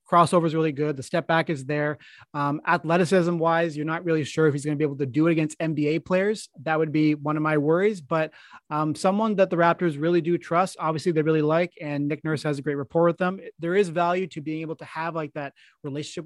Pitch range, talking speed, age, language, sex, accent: 150-175 Hz, 250 wpm, 30-49, English, male, American